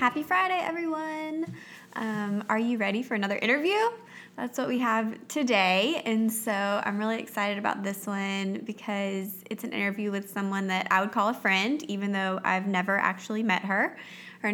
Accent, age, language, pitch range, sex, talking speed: American, 20-39, English, 195-230 Hz, female, 180 wpm